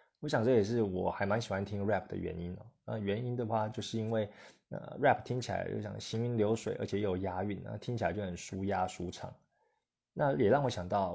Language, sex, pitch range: Chinese, male, 95-115 Hz